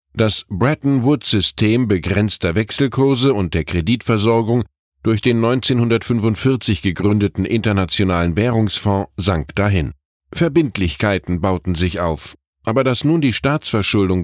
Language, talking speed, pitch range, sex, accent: German, 100 wpm, 95-130 Hz, male, German